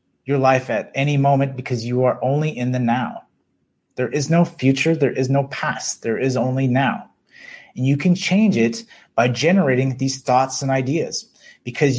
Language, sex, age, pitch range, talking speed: English, male, 30-49, 135-185 Hz, 180 wpm